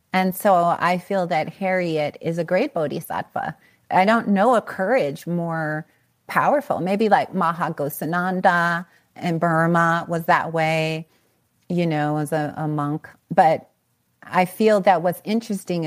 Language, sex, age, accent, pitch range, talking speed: English, female, 30-49, American, 160-210 Hz, 145 wpm